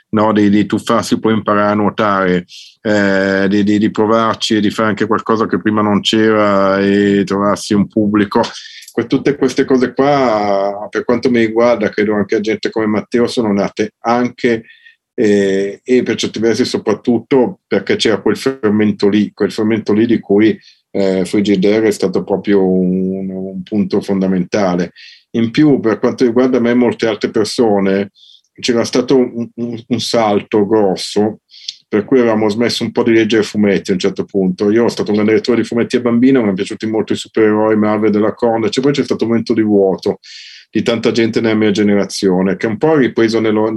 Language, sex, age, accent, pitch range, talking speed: Italian, male, 50-69, native, 100-115 Hz, 185 wpm